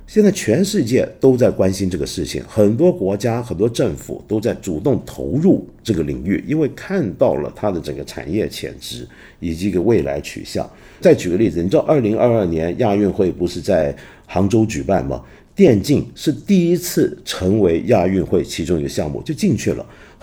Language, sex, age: Chinese, male, 50-69